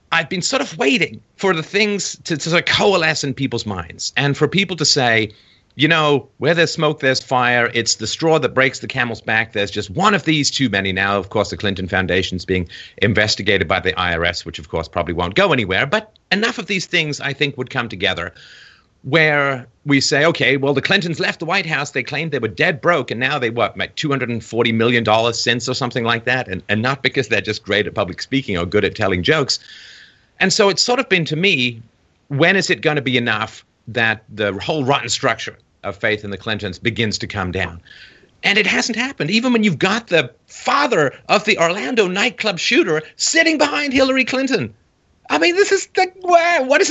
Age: 40-59